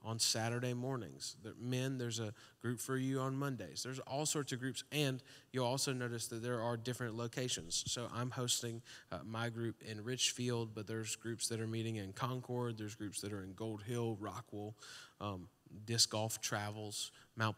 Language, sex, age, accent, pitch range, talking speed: English, male, 20-39, American, 110-125 Hz, 180 wpm